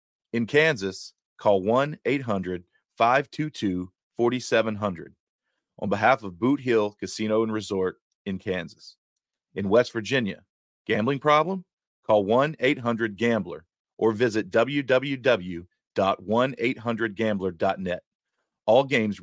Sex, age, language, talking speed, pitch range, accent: male, 40-59, English, 80 wpm, 100-125 Hz, American